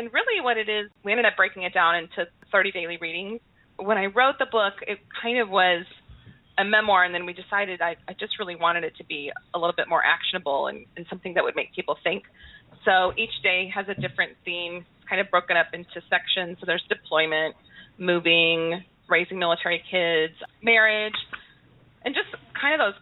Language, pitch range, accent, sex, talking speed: English, 170-210 Hz, American, female, 200 wpm